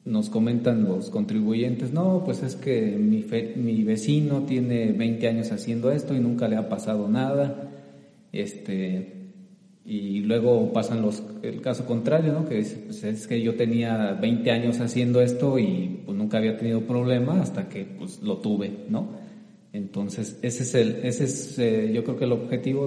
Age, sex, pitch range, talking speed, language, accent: 40-59, male, 115-150 Hz, 175 wpm, English, Mexican